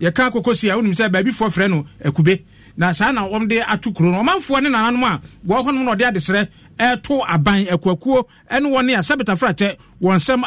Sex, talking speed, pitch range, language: male, 200 wpm, 180-245 Hz, English